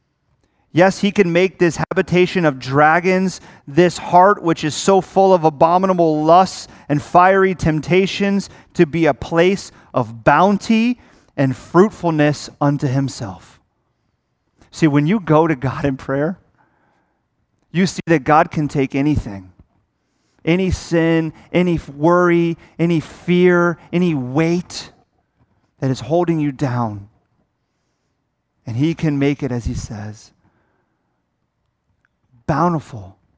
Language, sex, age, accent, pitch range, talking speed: English, male, 30-49, American, 115-165 Hz, 120 wpm